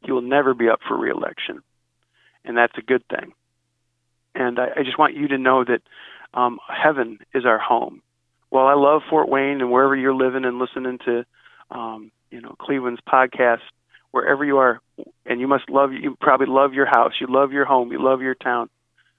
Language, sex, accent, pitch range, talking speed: English, male, American, 120-135 Hz, 195 wpm